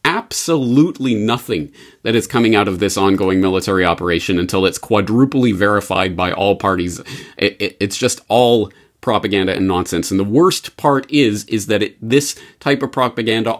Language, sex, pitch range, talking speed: English, male, 110-160 Hz, 155 wpm